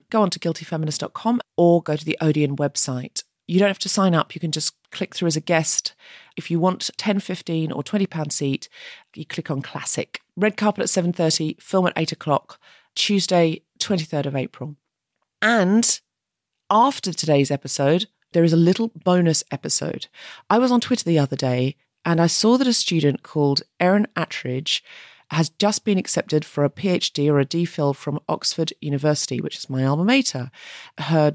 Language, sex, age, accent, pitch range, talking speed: English, female, 40-59, British, 150-195 Hz, 180 wpm